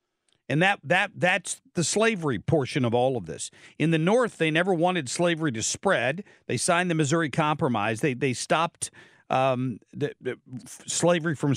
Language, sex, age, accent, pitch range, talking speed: English, male, 50-69, American, 145-180 Hz, 170 wpm